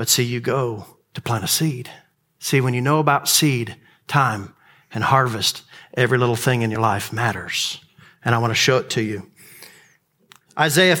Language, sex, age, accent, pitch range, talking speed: English, male, 50-69, American, 135-170 Hz, 180 wpm